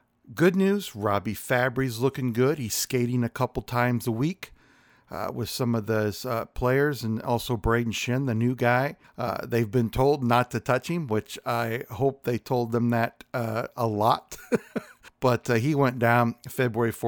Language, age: English, 60-79